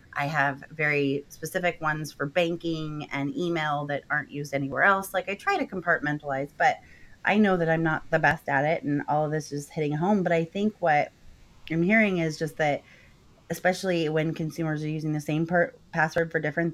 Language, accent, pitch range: English, American, 150-185 Hz